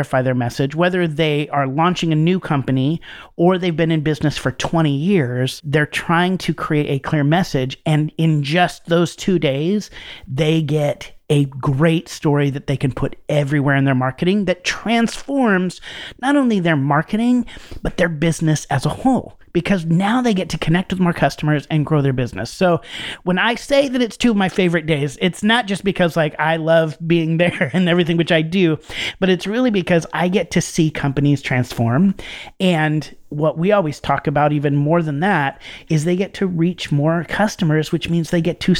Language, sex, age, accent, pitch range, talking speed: English, male, 40-59, American, 150-185 Hz, 195 wpm